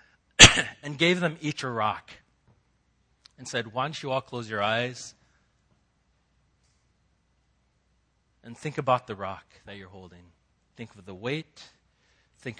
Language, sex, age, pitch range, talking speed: English, male, 40-59, 105-155 Hz, 135 wpm